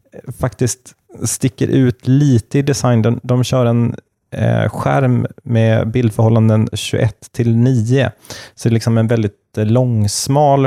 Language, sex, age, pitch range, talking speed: Swedish, male, 30-49, 110-125 Hz, 140 wpm